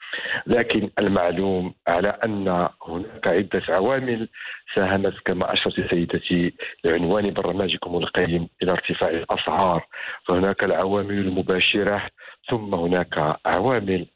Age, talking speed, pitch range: 50-69, 100 wpm, 90-105 Hz